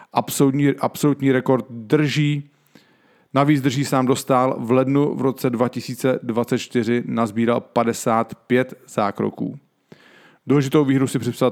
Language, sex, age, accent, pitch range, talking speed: English, male, 40-59, Czech, 115-135 Hz, 105 wpm